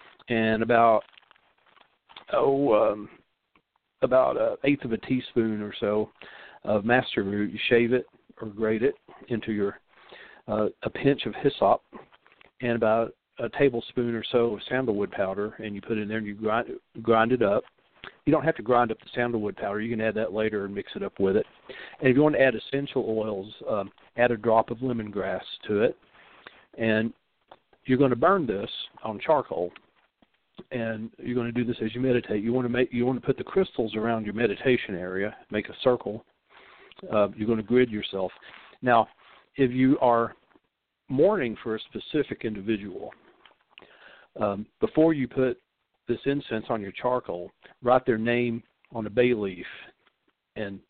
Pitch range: 110-125 Hz